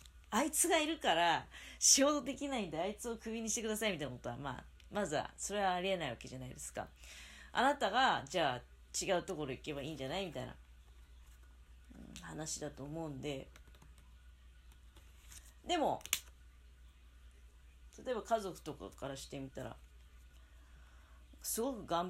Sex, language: female, Japanese